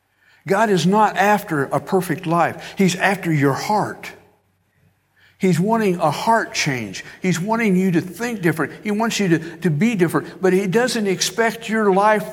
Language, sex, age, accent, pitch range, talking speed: English, male, 60-79, American, 110-165 Hz, 170 wpm